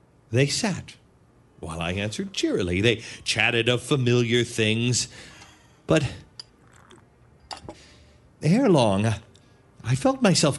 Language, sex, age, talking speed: English, male, 40-59, 95 wpm